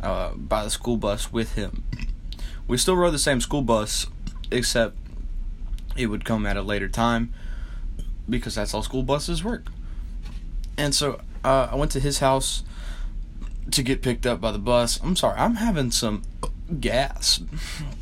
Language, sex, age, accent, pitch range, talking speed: English, male, 10-29, American, 80-130 Hz, 165 wpm